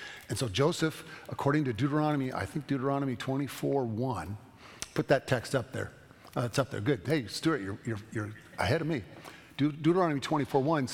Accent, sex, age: American, male, 50-69